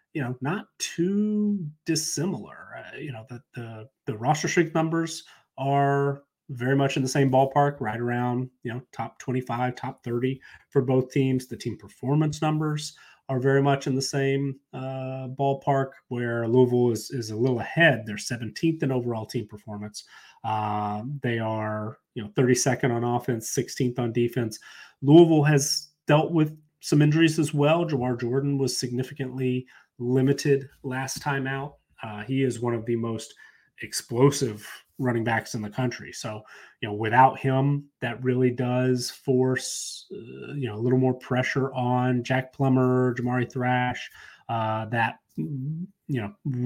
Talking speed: 155 wpm